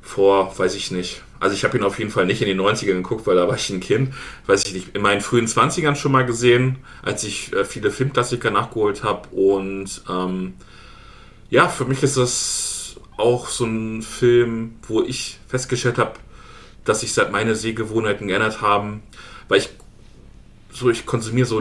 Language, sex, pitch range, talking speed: German, male, 105-120 Hz, 185 wpm